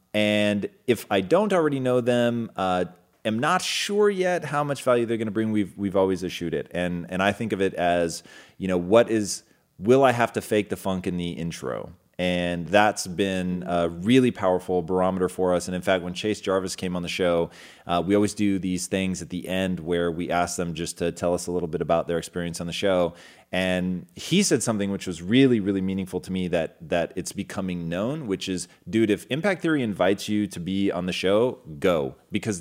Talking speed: 225 wpm